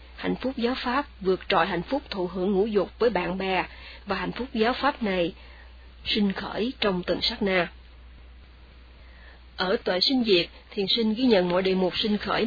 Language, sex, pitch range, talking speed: Vietnamese, female, 170-215 Hz, 190 wpm